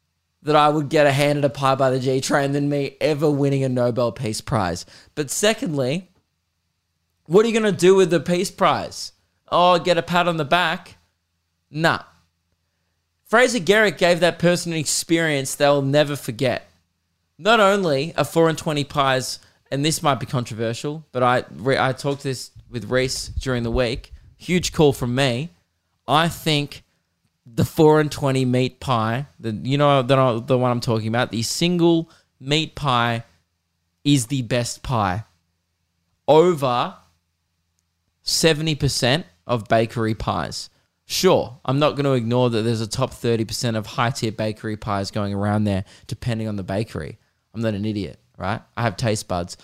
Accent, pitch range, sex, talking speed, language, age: Australian, 105-145 Hz, male, 170 wpm, English, 20-39